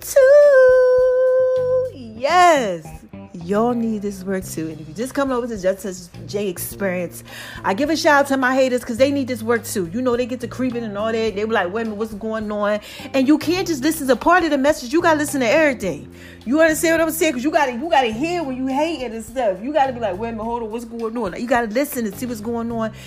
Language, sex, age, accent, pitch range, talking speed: English, female, 40-59, American, 210-290 Hz, 270 wpm